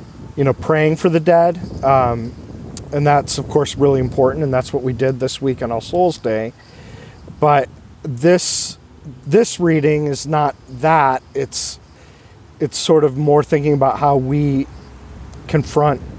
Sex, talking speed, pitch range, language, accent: male, 150 wpm, 120-155 Hz, English, American